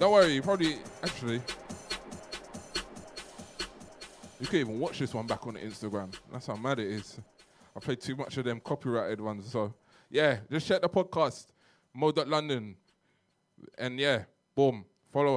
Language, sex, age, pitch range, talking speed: English, male, 20-39, 115-150 Hz, 150 wpm